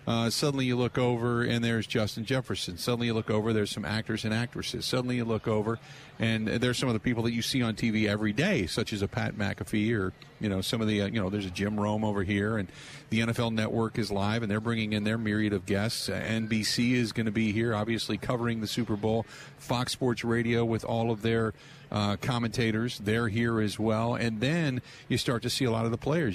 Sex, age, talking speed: male, 40-59, 235 wpm